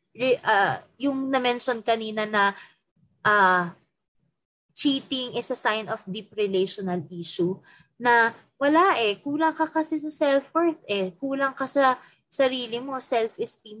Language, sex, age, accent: Filipino, female, 20-39, native